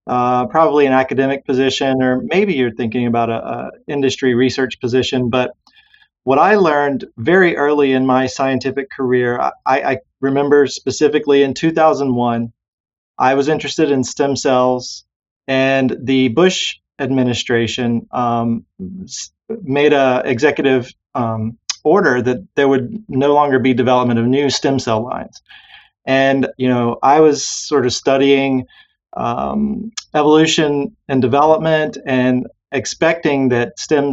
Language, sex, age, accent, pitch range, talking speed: English, male, 30-49, American, 125-150 Hz, 130 wpm